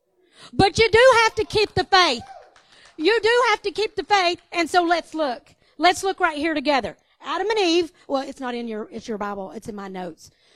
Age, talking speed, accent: 50-69, 220 wpm, American